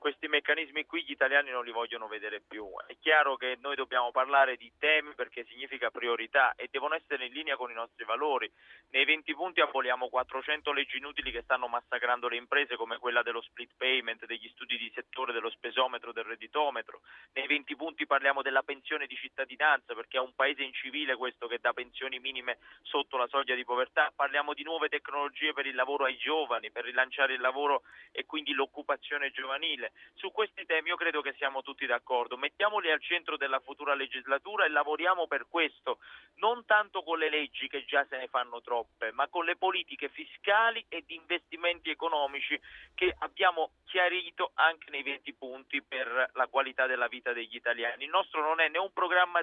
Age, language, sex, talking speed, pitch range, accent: 30-49, Italian, male, 190 wpm, 130-155 Hz, native